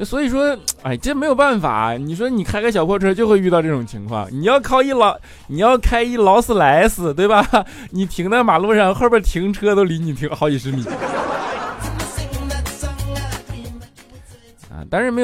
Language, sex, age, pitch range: Chinese, male, 20-39, 135-215 Hz